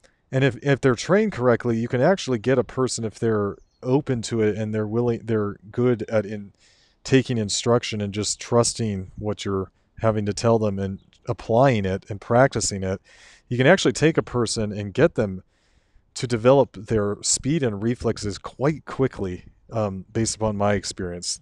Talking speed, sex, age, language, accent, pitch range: 175 wpm, male, 40-59, English, American, 100-120 Hz